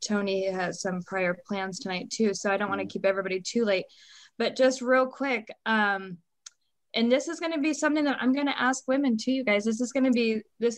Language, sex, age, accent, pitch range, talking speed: English, female, 20-39, American, 200-235 Hz, 240 wpm